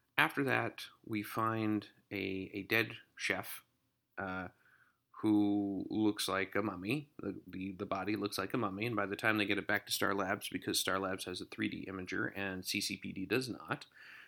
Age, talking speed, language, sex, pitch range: 30-49, 185 wpm, English, male, 95-120 Hz